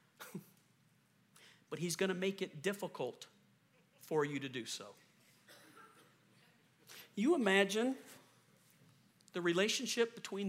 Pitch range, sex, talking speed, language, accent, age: 170-200 Hz, male, 95 wpm, English, American, 50-69